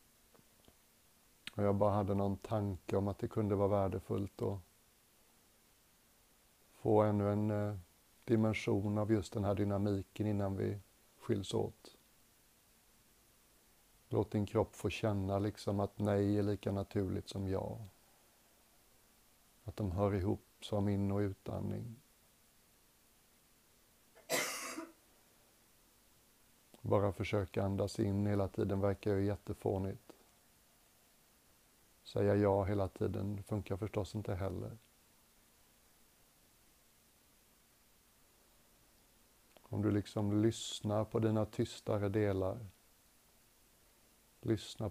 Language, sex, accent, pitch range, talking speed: Swedish, male, native, 100-110 Hz, 95 wpm